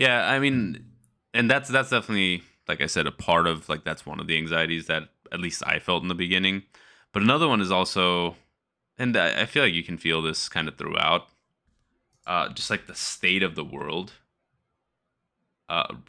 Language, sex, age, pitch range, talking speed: English, male, 20-39, 80-90 Hz, 195 wpm